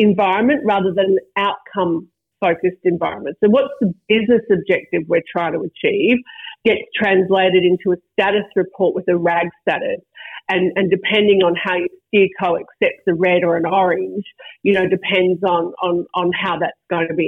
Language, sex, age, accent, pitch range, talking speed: English, female, 40-59, Australian, 180-215 Hz, 175 wpm